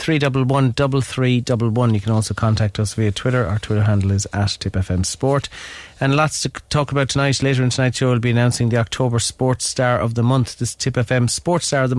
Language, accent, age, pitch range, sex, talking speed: English, Irish, 30-49, 100-125 Hz, male, 210 wpm